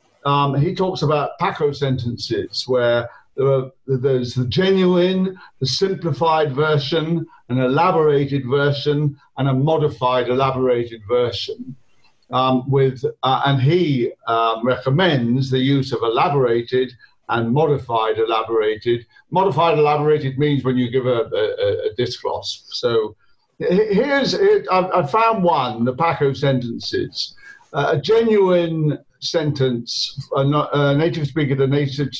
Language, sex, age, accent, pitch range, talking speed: English, male, 50-69, British, 130-185 Hz, 125 wpm